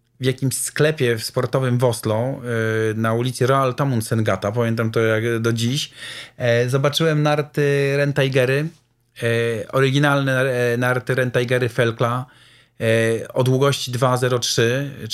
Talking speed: 95 wpm